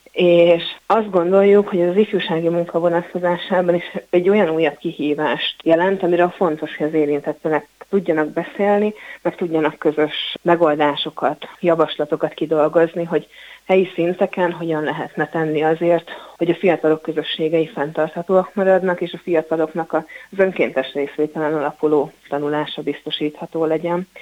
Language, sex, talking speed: Hungarian, female, 120 wpm